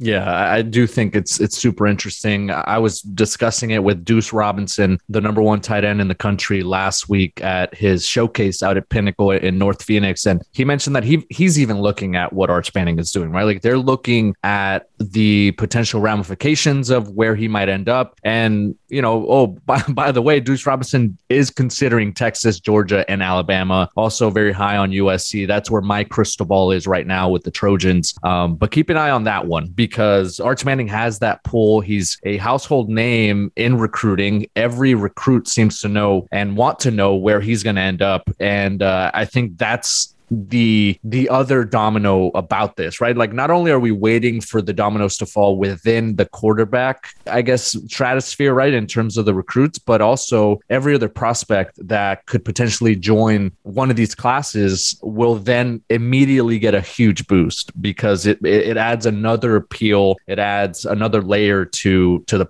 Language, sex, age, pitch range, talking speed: English, male, 20-39, 100-120 Hz, 190 wpm